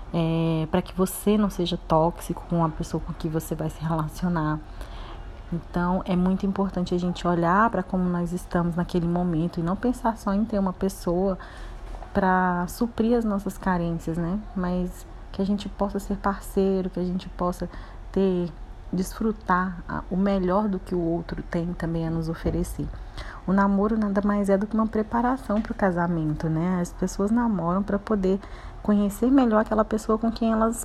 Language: Portuguese